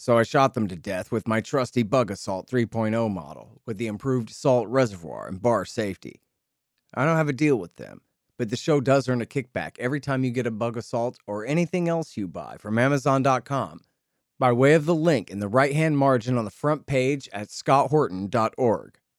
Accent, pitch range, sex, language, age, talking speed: American, 105-130 Hz, male, English, 40-59, 200 wpm